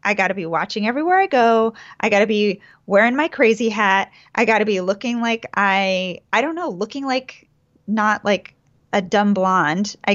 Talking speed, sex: 200 wpm, female